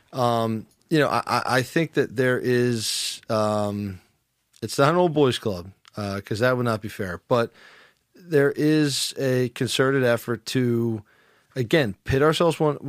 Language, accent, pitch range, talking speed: English, American, 110-135 Hz, 160 wpm